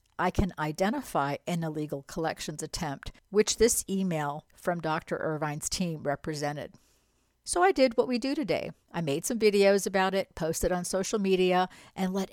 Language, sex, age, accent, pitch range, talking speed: English, female, 60-79, American, 155-215 Hz, 165 wpm